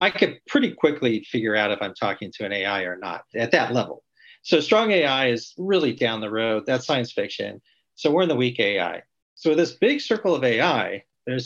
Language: English